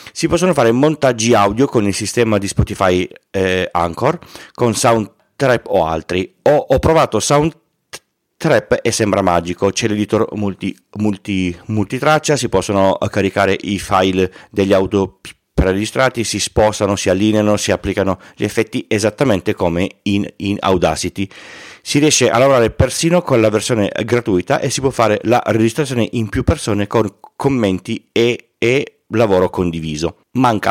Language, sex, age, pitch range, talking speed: Italian, male, 30-49, 95-120 Hz, 145 wpm